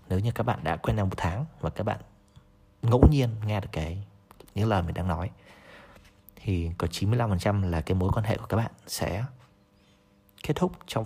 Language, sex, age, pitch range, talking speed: Vietnamese, male, 20-39, 95-115 Hz, 200 wpm